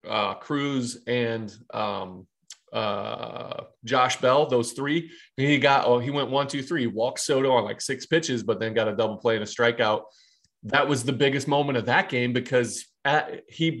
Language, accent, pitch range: English, American, 120-140 Hz